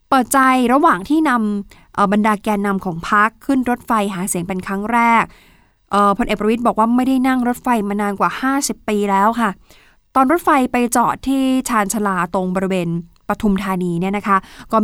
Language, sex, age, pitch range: Thai, female, 20-39, 200-250 Hz